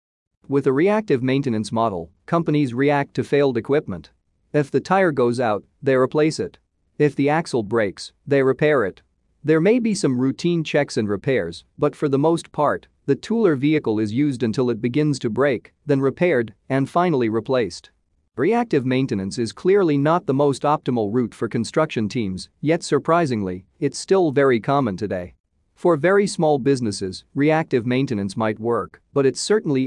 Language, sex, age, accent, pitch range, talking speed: English, male, 40-59, American, 115-150 Hz, 170 wpm